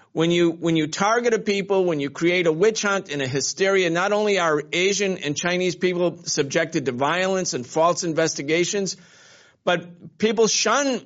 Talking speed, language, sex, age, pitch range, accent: 175 wpm, English, male, 50-69, 160-200 Hz, American